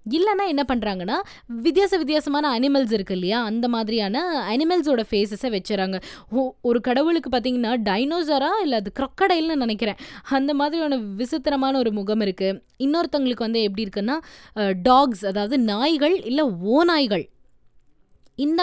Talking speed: 120 wpm